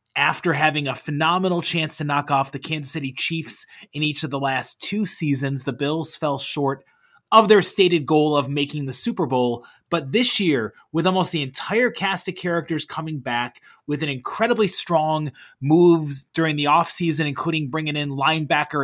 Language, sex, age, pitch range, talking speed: English, male, 30-49, 140-175 Hz, 180 wpm